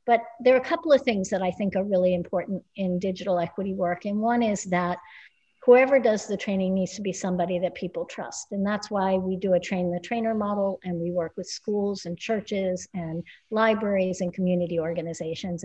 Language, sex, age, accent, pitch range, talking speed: English, female, 60-79, American, 180-220 Hz, 205 wpm